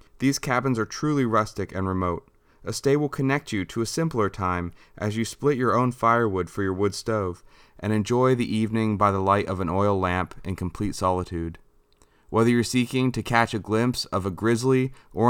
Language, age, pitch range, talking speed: English, 20-39, 95-125 Hz, 200 wpm